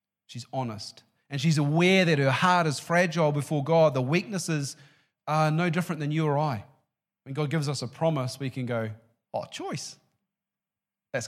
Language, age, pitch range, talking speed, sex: English, 40-59, 120-165 Hz, 175 wpm, male